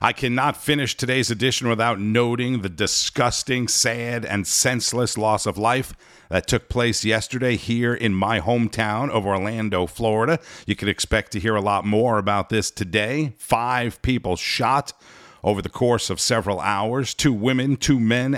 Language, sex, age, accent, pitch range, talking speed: English, male, 50-69, American, 100-125 Hz, 165 wpm